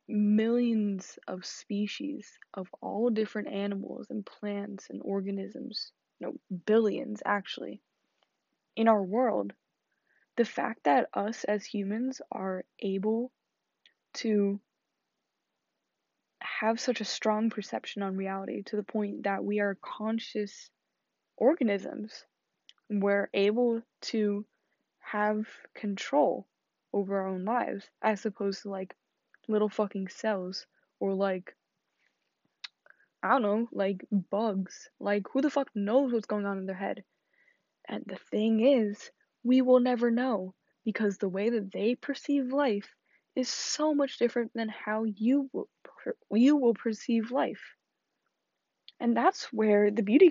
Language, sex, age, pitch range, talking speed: English, female, 20-39, 200-240 Hz, 130 wpm